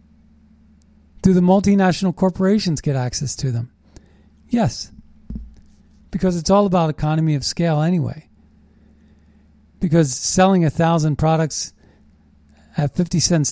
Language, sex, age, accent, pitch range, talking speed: English, male, 40-59, American, 120-175 Hz, 110 wpm